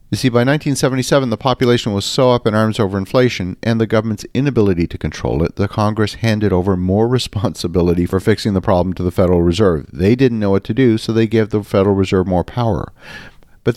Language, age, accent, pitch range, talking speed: English, 50-69, American, 90-115 Hz, 215 wpm